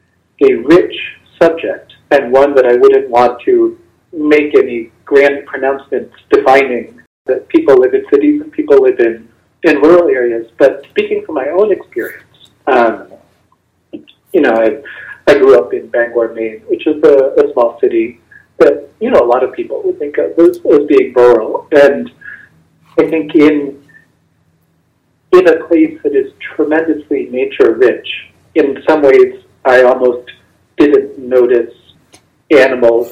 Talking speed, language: 150 wpm, English